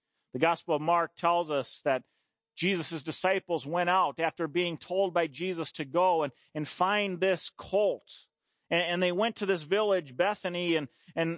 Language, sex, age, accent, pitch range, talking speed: English, male, 40-59, American, 175-230 Hz, 175 wpm